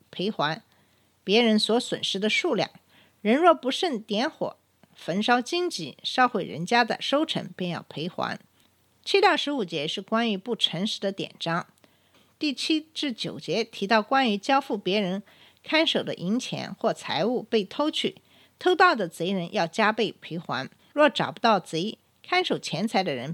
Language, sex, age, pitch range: Chinese, female, 50-69, 195-275 Hz